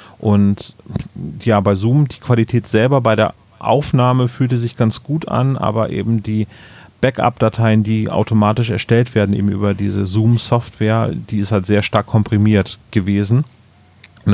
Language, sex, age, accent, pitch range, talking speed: German, male, 30-49, German, 100-115 Hz, 145 wpm